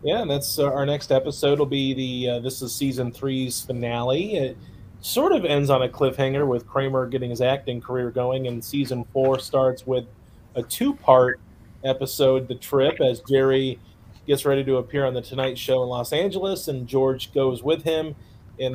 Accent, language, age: American, English, 30-49